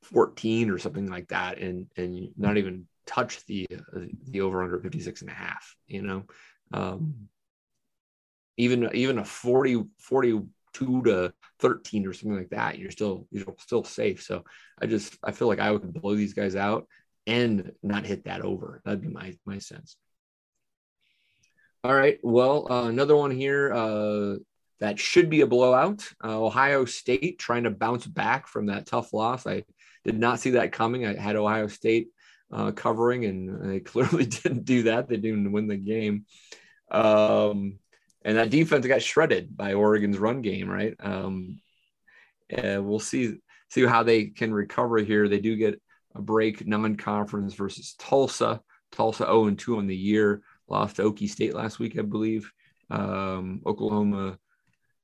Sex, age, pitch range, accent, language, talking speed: male, 30-49, 100-115 Hz, American, English, 170 wpm